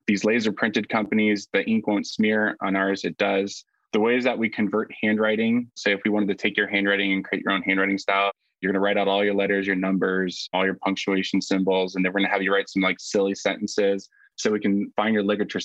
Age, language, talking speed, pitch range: 20-39, English, 245 wpm, 95-105 Hz